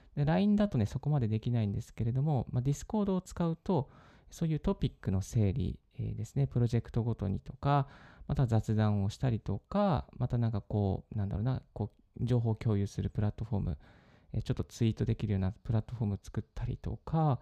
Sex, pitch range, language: male, 110-150 Hz, Japanese